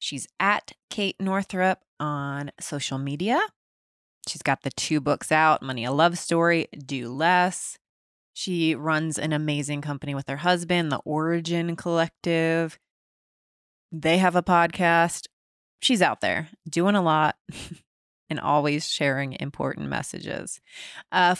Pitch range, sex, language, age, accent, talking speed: 160-215 Hz, female, English, 20-39, American, 130 wpm